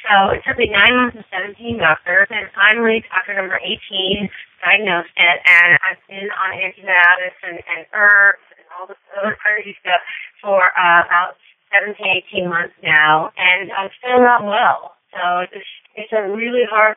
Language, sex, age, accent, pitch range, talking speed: English, female, 30-49, American, 175-205 Hz, 170 wpm